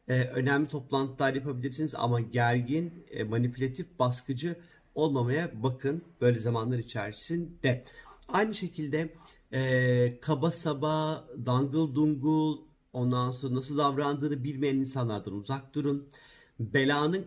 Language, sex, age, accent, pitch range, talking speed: Turkish, male, 50-69, native, 125-155 Hz, 105 wpm